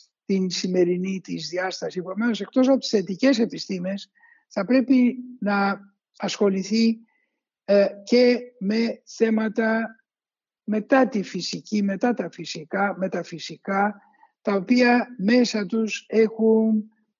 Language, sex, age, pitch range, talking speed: Greek, male, 60-79, 195-245 Hz, 105 wpm